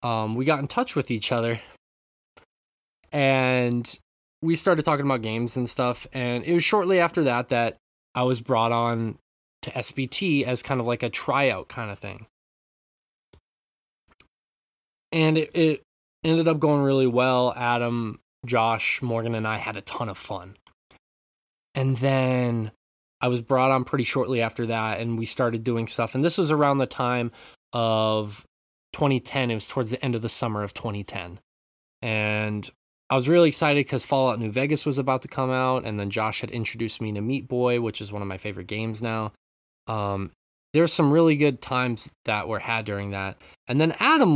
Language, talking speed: English, 185 wpm